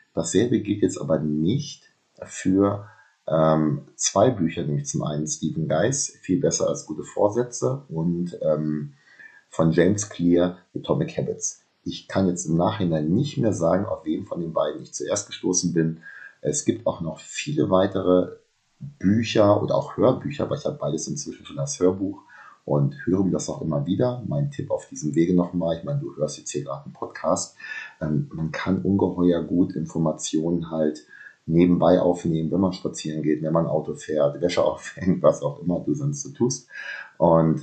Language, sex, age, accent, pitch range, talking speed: German, male, 30-49, German, 80-100 Hz, 175 wpm